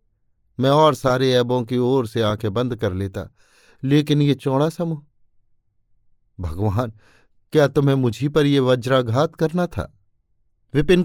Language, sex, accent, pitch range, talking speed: Hindi, male, native, 110-145 Hz, 140 wpm